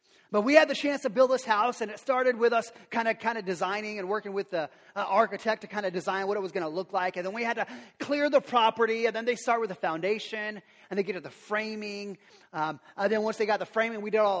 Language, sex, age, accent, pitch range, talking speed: English, male, 30-49, American, 190-255 Hz, 270 wpm